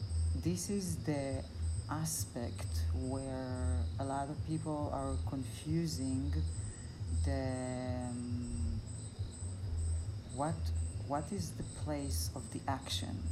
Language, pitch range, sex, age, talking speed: English, 85-125 Hz, female, 40-59, 95 wpm